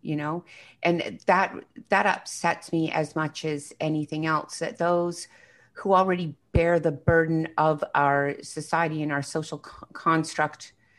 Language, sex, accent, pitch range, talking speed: English, female, American, 140-165 Hz, 140 wpm